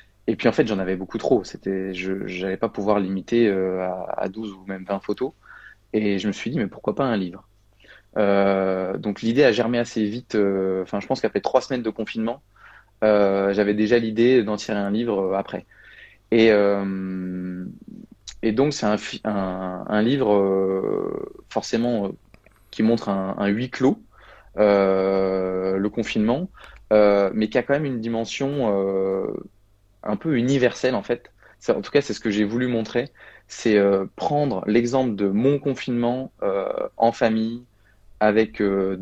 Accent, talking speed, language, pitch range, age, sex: French, 170 wpm, French, 95-115 Hz, 20-39, male